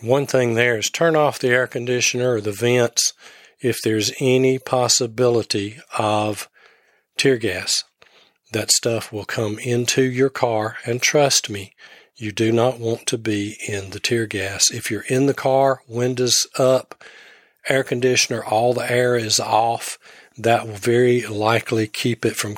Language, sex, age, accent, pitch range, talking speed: English, male, 40-59, American, 110-125 Hz, 160 wpm